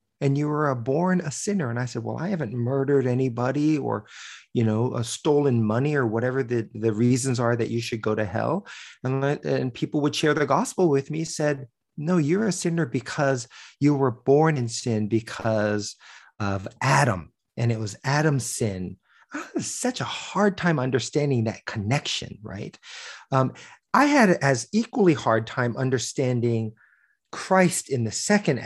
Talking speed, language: 170 wpm, English